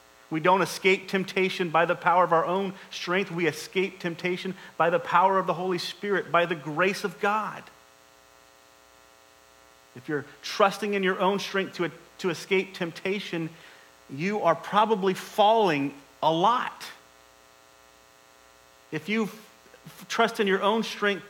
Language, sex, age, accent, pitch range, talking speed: English, male, 40-59, American, 140-210 Hz, 140 wpm